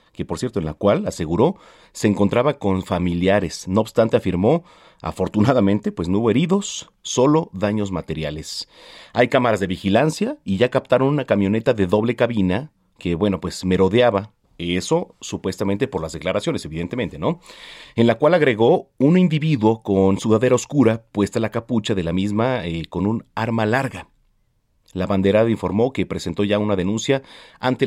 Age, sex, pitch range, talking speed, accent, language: 40-59, male, 95-120 Hz, 160 wpm, Mexican, Spanish